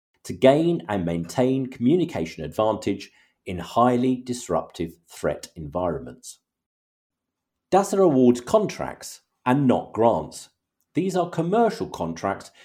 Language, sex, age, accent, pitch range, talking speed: English, male, 40-59, British, 95-150 Hz, 100 wpm